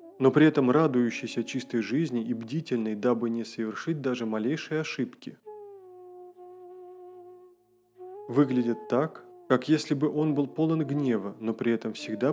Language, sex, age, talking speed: Russian, male, 20-39, 130 wpm